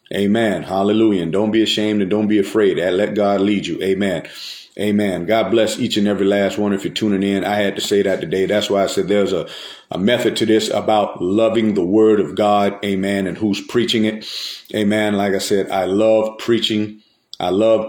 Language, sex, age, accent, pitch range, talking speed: English, male, 40-59, American, 100-110 Hz, 210 wpm